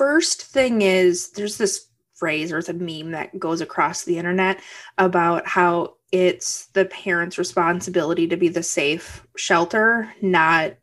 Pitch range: 175-235 Hz